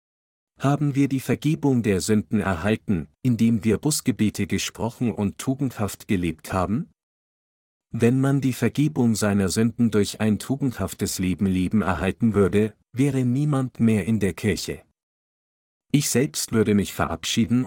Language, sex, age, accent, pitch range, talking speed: German, male, 50-69, German, 100-125 Hz, 130 wpm